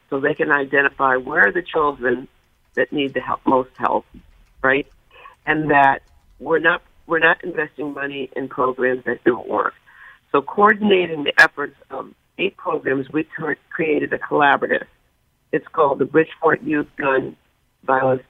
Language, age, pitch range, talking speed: English, 60-79, 135-160 Hz, 150 wpm